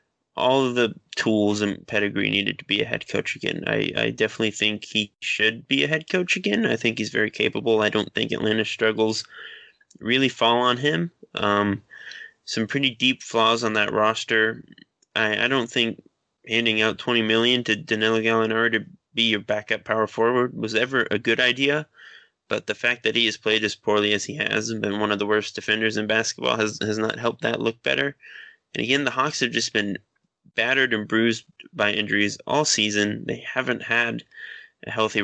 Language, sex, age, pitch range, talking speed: English, male, 20-39, 105-120 Hz, 195 wpm